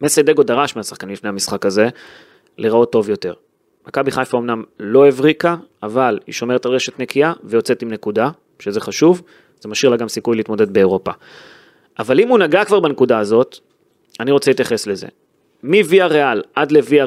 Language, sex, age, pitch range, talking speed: Hebrew, male, 30-49, 125-170 Hz, 170 wpm